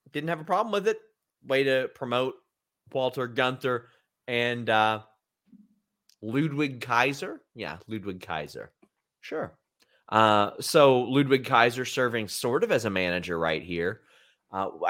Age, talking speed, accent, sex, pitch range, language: 30-49, 130 wpm, American, male, 110-140 Hz, English